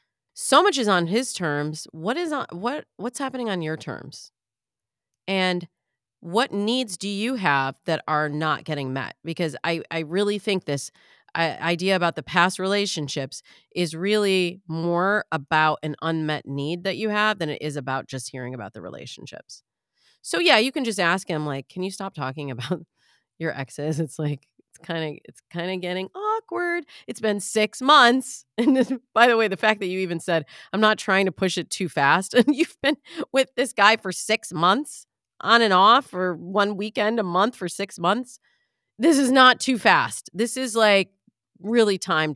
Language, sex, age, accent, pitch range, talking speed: English, female, 30-49, American, 155-225 Hz, 185 wpm